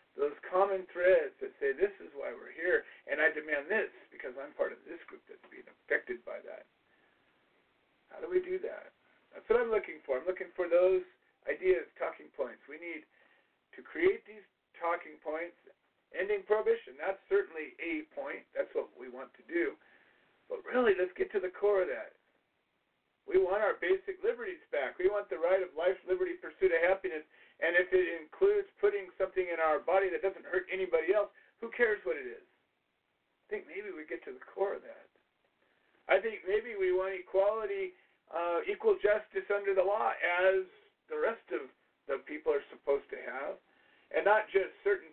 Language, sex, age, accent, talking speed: English, male, 50-69, American, 185 wpm